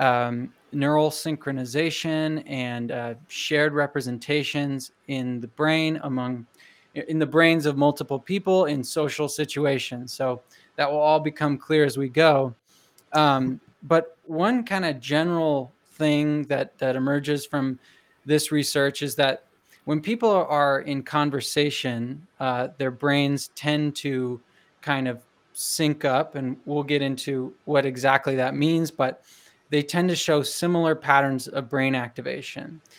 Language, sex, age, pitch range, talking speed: English, male, 20-39, 135-155 Hz, 140 wpm